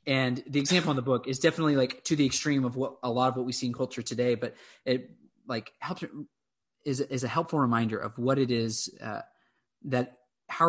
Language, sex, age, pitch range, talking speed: English, male, 20-39, 115-135 Hz, 220 wpm